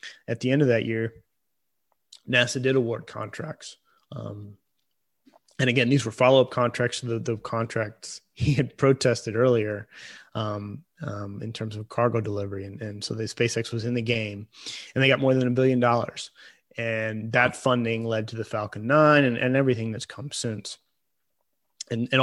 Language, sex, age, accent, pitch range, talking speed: English, male, 30-49, American, 110-125 Hz, 175 wpm